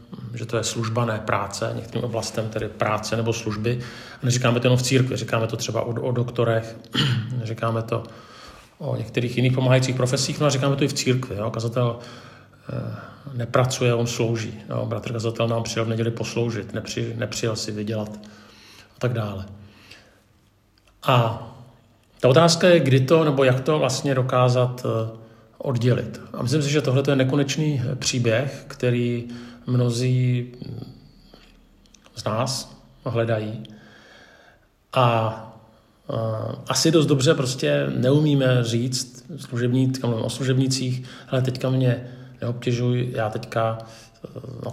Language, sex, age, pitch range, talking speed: Czech, male, 50-69, 115-130 Hz, 135 wpm